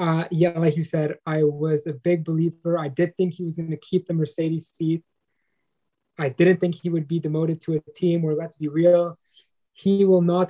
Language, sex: English, male